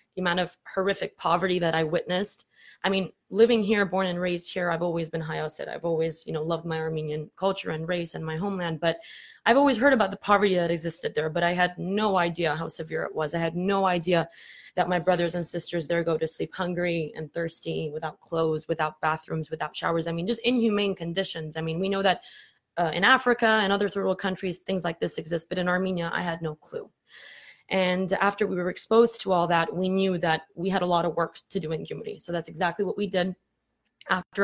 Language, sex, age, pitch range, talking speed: English, female, 20-39, 165-190 Hz, 230 wpm